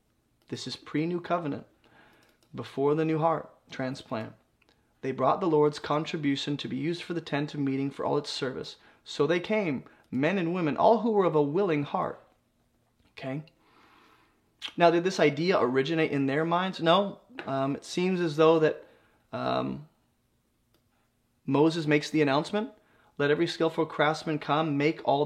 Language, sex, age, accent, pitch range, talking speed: English, male, 20-39, American, 140-165 Hz, 160 wpm